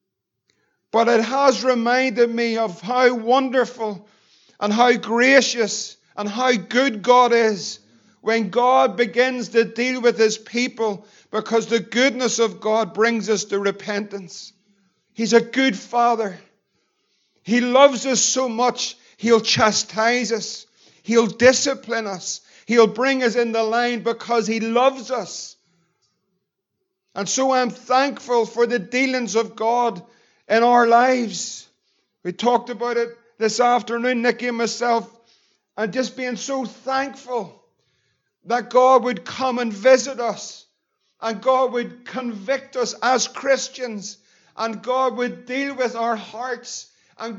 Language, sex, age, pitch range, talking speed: English, male, 50-69, 225-255 Hz, 135 wpm